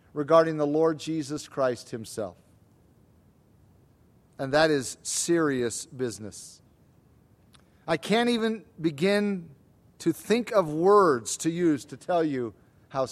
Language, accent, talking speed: English, American, 115 wpm